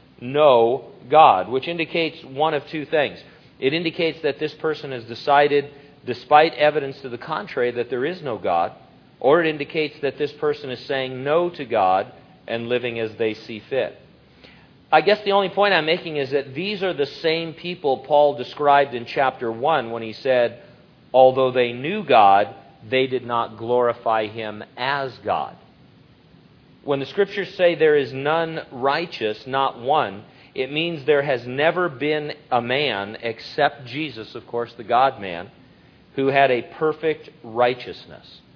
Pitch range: 120-155 Hz